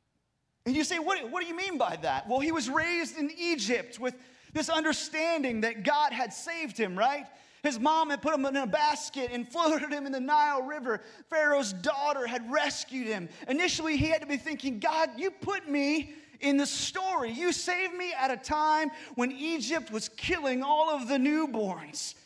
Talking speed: 195 wpm